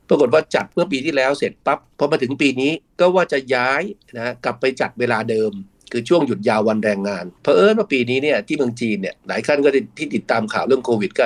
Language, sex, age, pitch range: Thai, male, 60-79, 105-130 Hz